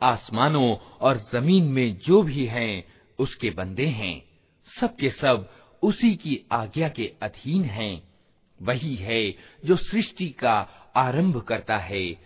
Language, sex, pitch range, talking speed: Hindi, male, 110-180 Hz, 125 wpm